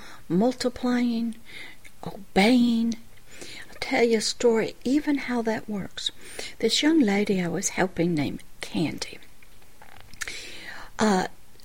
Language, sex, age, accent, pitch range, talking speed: English, female, 60-79, American, 180-245 Hz, 105 wpm